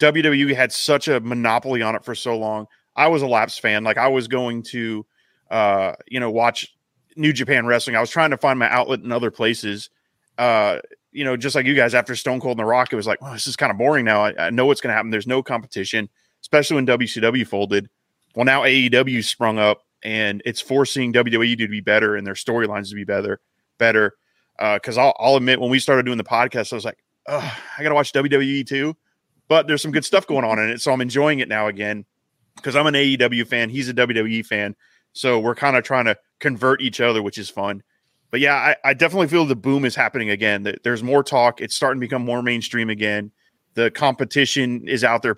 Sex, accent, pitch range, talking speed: male, American, 110-135 Hz, 230 wpm